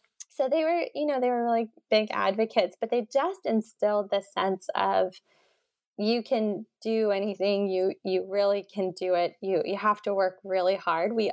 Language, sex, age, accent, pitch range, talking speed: English, female, 20-39, American, 185-220 Hz, 185 wpm